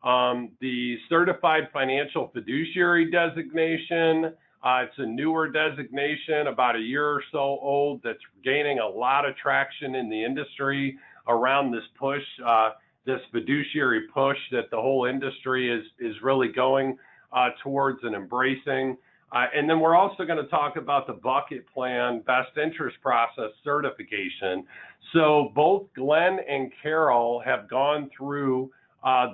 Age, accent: 50-69, American